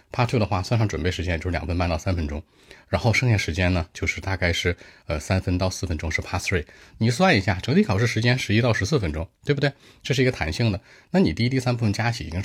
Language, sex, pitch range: Chinese, male, 85-115 Hz